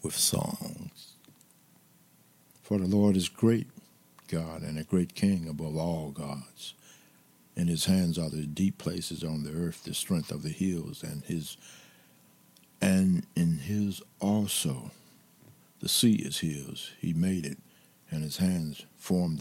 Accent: American